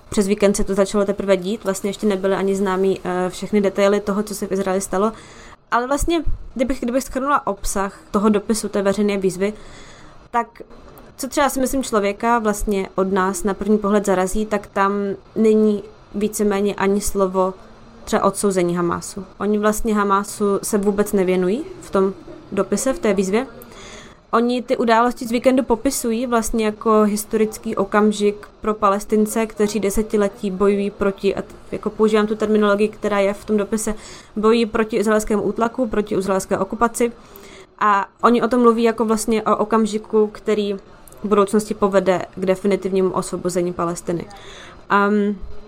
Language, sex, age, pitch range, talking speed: Czech, female, 20-39, 195-220 Hz, 155 wpm